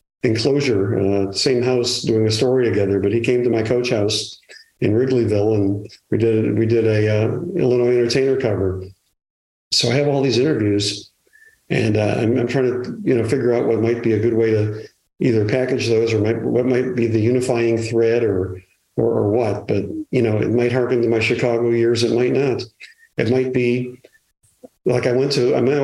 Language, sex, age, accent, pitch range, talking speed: English, male, 50-69, American, 105-125 Hz, 205 wpm